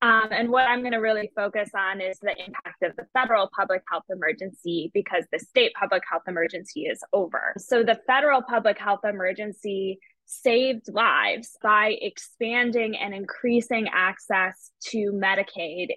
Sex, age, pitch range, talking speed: female, 10-29, 195-235 Hz, 155 wpm